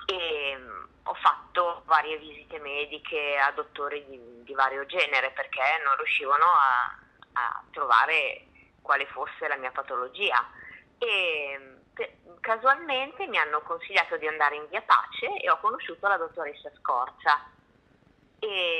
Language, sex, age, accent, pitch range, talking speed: Italian, female, 20-39, native, 140-205 Hz, 130 wpm